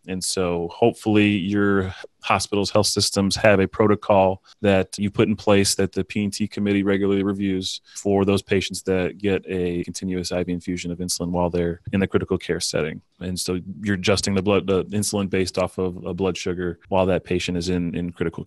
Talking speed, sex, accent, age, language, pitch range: 195 wpm, male, American, 30-49, English, 95-105 Hz